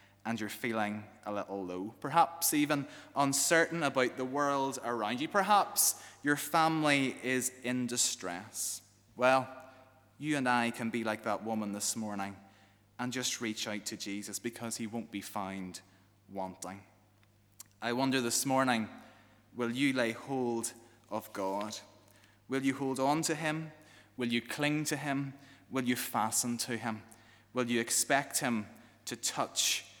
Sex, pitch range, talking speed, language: male, 105-135 Hz, 150 wpm, English